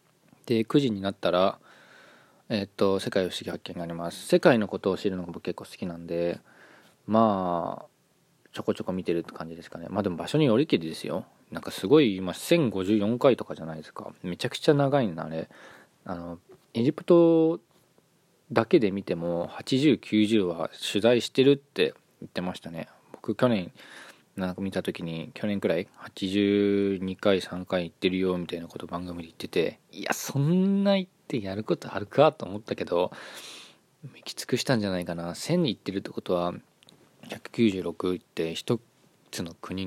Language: Japanese